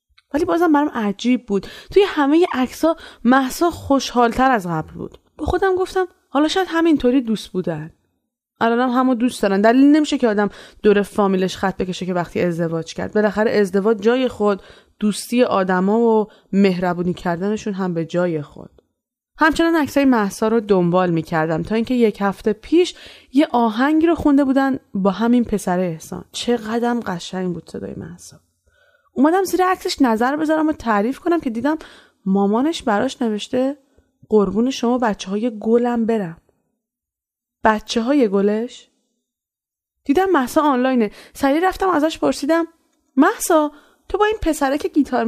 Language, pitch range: Persian, 205-290 Hz